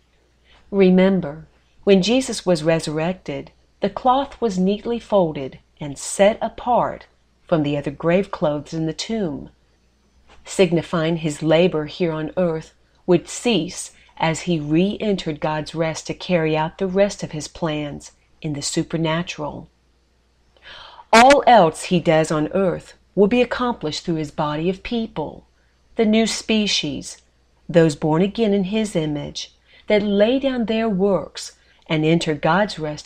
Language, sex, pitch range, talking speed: English, female, 145-195 Hz, 140 wpm